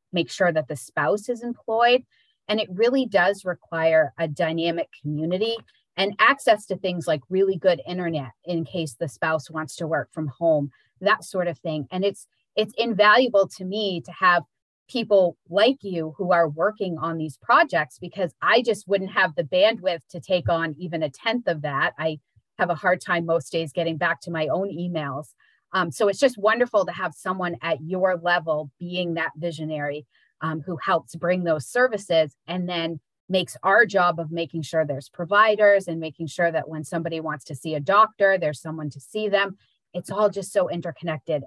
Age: 30-49